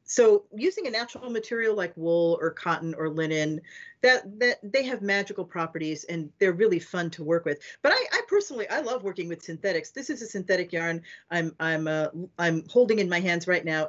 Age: 40-59